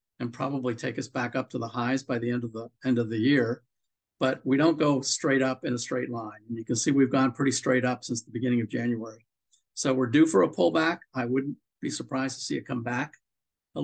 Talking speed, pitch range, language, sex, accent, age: 250 wpm, 125-145 Hz, English, male, American, 50-69